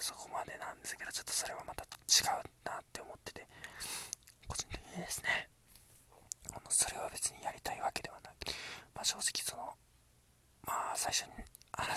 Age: 20-39